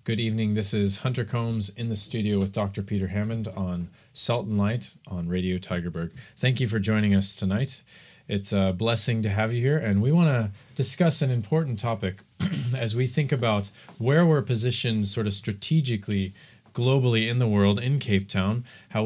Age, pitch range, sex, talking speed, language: 30-49, 105-135 Hz, male, 185 wpm, English